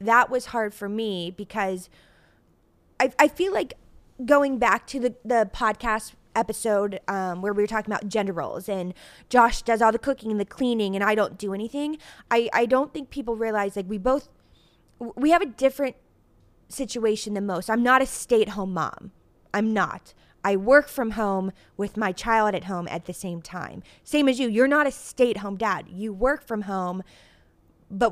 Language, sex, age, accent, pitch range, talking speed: English, female, 20-39, American, 200-245 Hz, 190 wpm